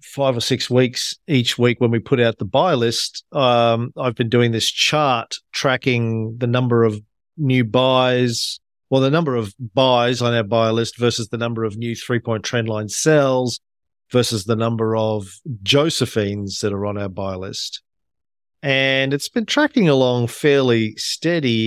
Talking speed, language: 165 wpm, English